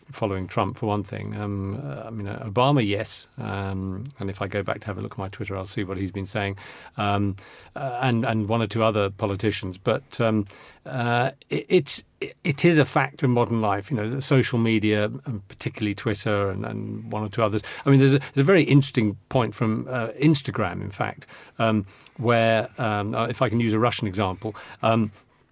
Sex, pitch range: male, 105-130 Hz